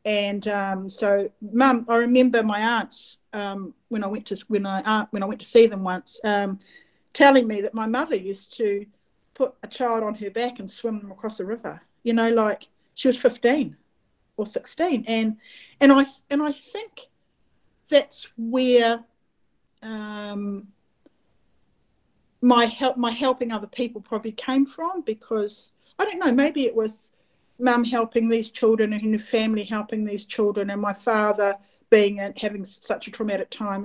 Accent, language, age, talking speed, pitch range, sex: Australian, English, 50-69, 170 wpm, 200-235 Hz, female